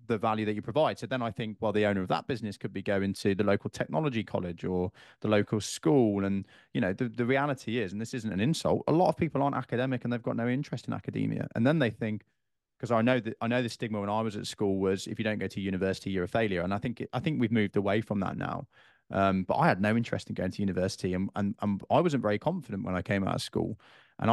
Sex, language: male, English